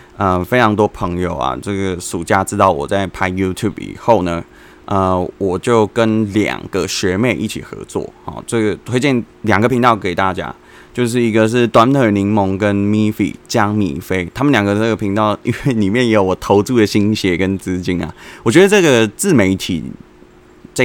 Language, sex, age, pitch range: Chinese, male, 20-39, 95-120 Hz